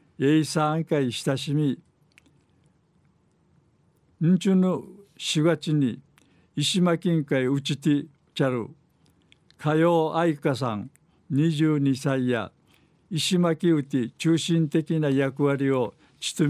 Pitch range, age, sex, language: 135-160 Hz, 60-79, male, Japanese